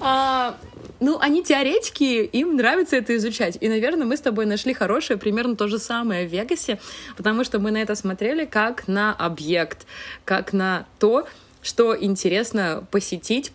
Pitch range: 170-220 Hz